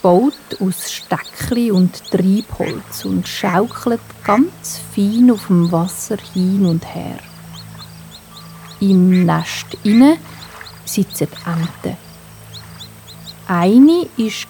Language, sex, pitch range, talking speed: German, female, 170-215 Hz, 90 wpm